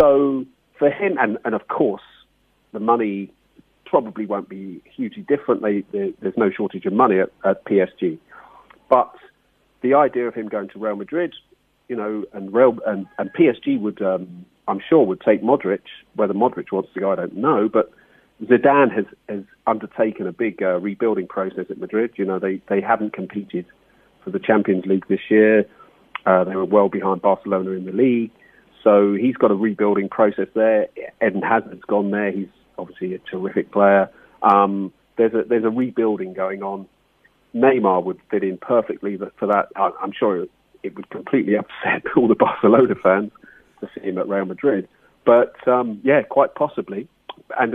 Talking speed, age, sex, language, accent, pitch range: 170 wpm, 40-59, male, English, British, 95-115 Hz